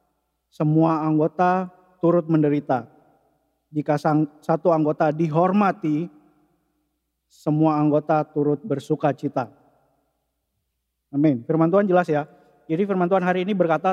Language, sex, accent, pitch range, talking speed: English, male, Indonesian, 145-170 Hz, 105 wpm